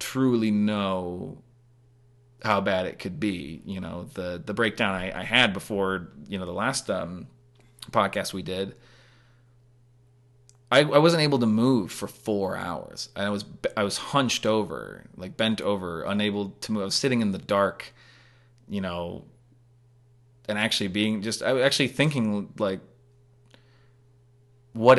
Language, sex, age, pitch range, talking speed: English, male, 30-49, 100-125 Hz, 150 wpm